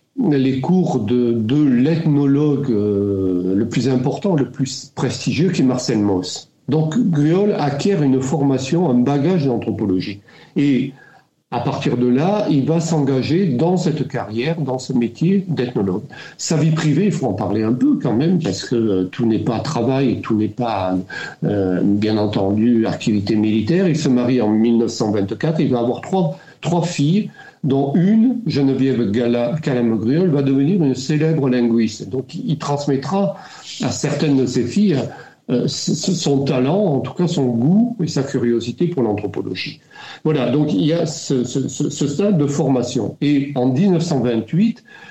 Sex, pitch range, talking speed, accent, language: male, 120-165 Hz, 160 wpm, French, English